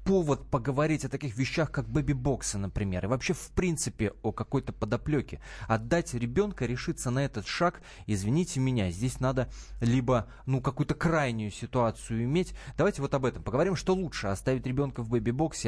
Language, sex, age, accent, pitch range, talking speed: Russian, male, 20-39, native, 110-140 Hz, 160 wpm